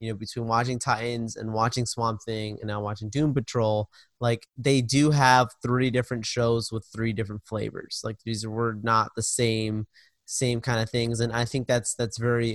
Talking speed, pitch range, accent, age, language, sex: 195 wpm, 110-130 Hz, American, 20-39, English, male